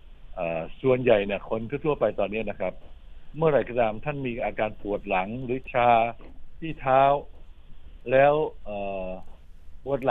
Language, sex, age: Thai, male, 60-79